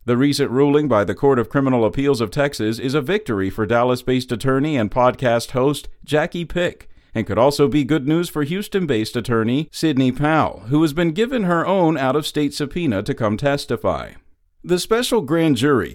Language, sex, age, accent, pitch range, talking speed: English, male, 50-69, American, 120-165 Hz, 180 wpm